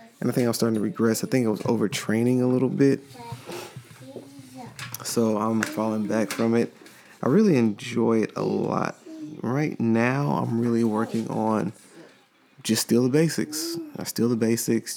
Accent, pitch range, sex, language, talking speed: American, 110-125 Hz, male, English, 165 wpm